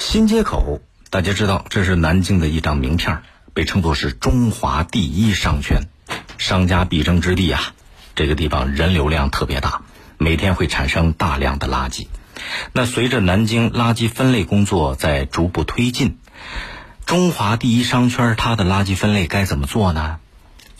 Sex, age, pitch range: male, 50-69, 80-110 Hz